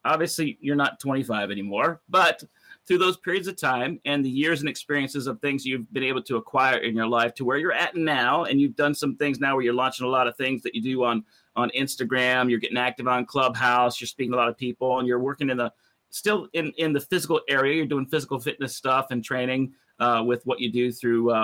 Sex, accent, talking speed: male, American, 245 wpm